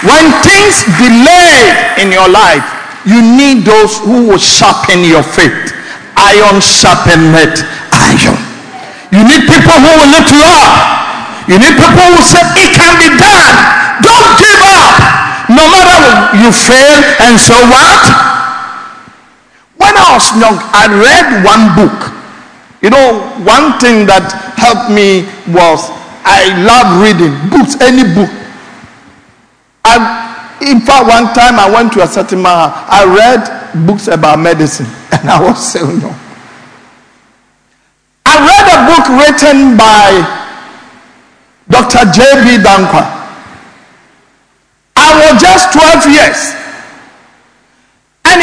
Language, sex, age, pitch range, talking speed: English, male, 50-69, 205-310 Hz, 130 wpm